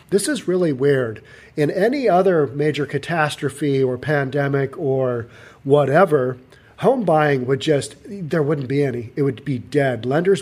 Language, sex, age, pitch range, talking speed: English, male, 40-59, 130-160 Hz, 150 wpm